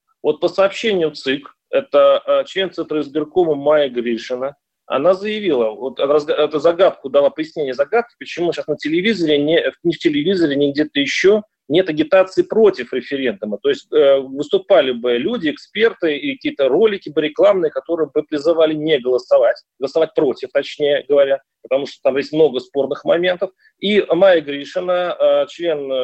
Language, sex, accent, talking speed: Russian, male, native, 150 wpm